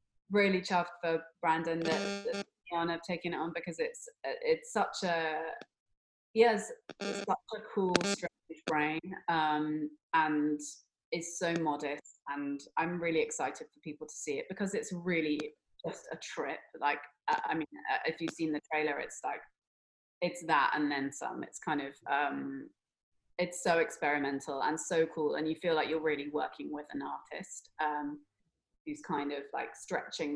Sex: female